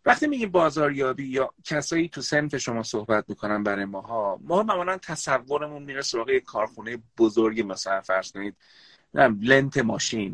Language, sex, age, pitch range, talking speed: Persian, male, 30-49, 110-160 Hz, 155 wpm